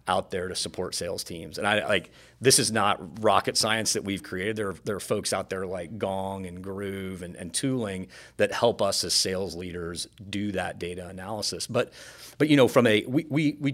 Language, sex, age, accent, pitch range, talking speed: English, male, 40-59, American, 95-115 Hz, 220 wpm